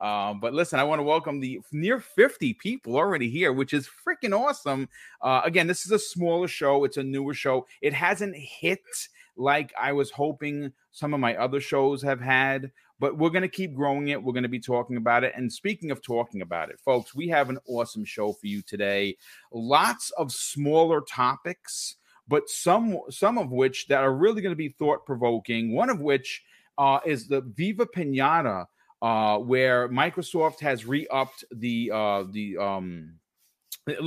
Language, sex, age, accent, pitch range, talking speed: English, male, 30-49, American, 120-155 Hz, 185 wpm